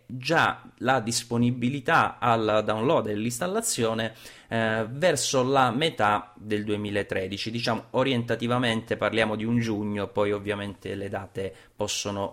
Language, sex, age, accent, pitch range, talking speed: Italian, male, 30-49, native, 105-125 Hz, 110 wpm